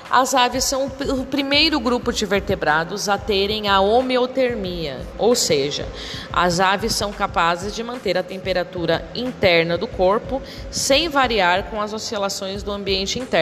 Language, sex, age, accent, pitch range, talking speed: Portuguese, female, 20-39, Brazilian, 180-230 Hz, 145 wpm